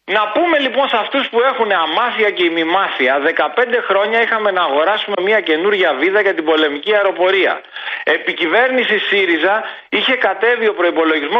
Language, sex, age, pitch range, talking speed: Greek, male, 40-59, 155-265 Hz, 155 wpm